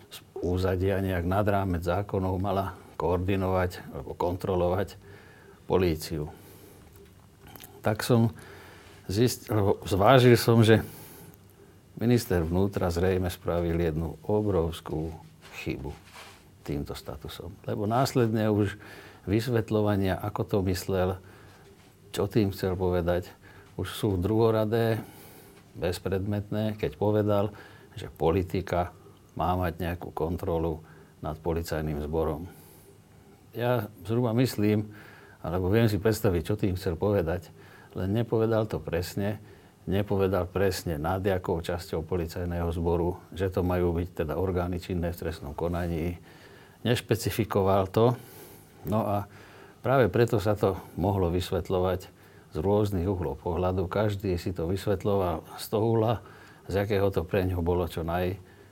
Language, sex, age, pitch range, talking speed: Slovak, male, 50-69, 90-105 Hz, 115 wpm